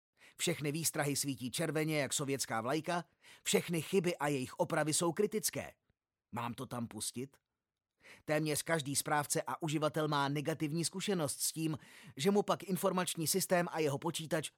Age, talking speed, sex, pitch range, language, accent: 30-49, 150 wpm, male, 140-185 Hz, Czech, native